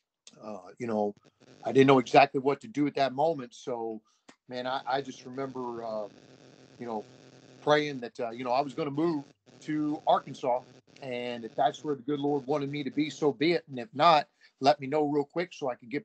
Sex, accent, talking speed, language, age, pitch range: male, American, 225 wpm, English, 40-59, 125-150 Hz